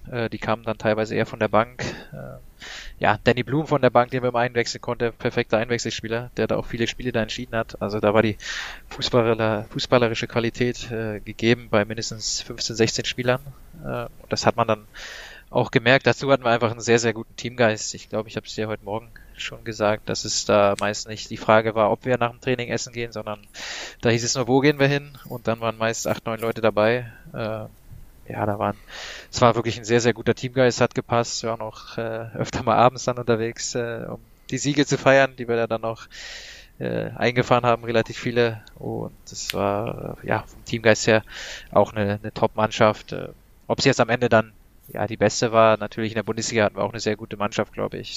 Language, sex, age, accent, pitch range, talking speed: German, male, 20-39, German, 110-120 Hz, 215 wpm